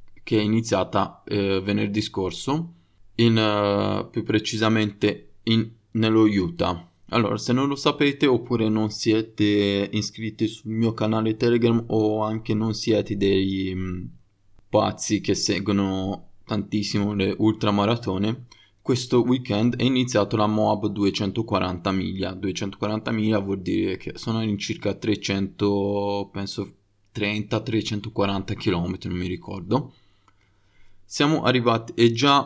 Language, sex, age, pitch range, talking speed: Italian, male, 20-39, 100-115 Hz, 115 wpm